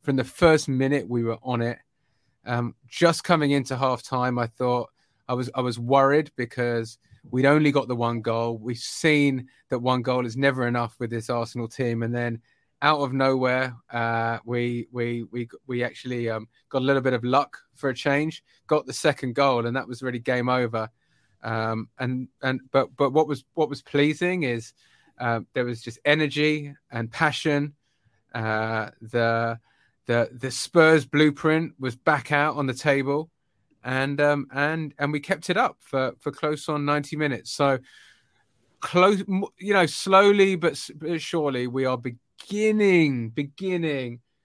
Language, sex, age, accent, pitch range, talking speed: English, male, 20-39, British, 120-145 Hz, 170 wpm